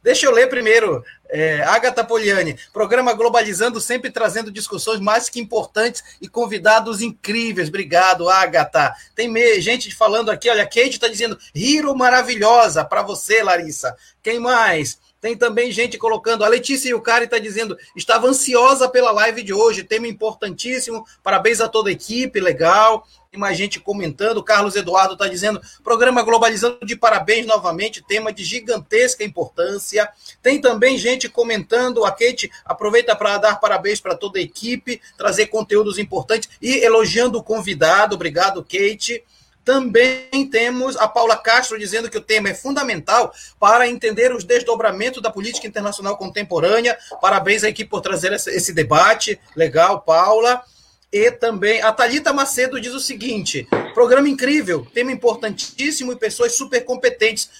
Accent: Brazilian